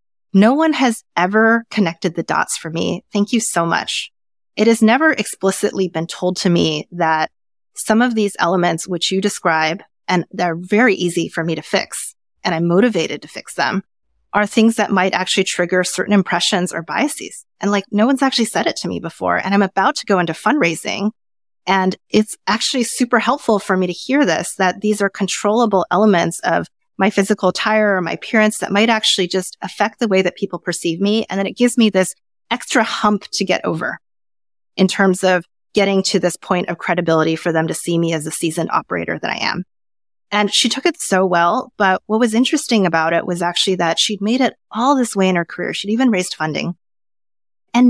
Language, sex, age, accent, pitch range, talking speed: English, female, 30-49, American, 170-215 Hz, 205 wpm